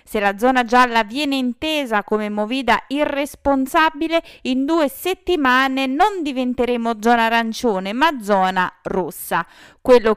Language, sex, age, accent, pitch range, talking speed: Italian, female, 30-49, native, 200-285 Hz, 120 wpm